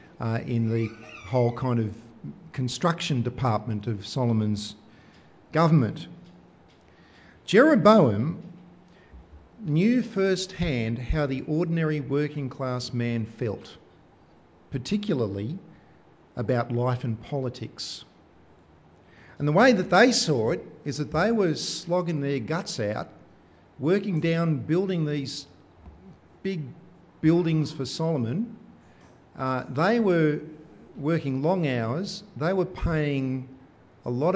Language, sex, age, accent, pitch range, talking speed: English, male, 50-69, Australian, 125-185 Hz, 105 wpm